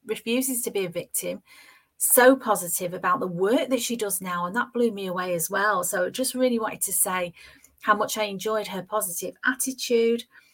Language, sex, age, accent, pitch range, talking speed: English, female, 40-59, British, 200-255 Hz, 195 wpm